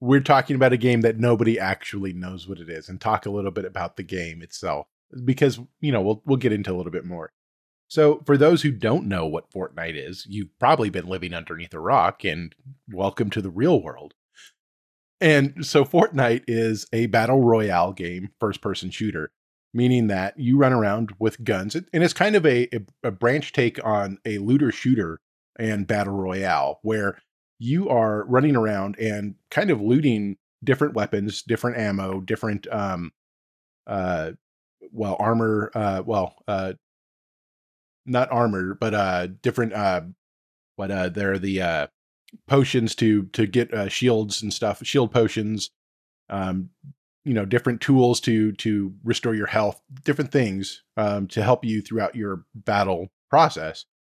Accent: American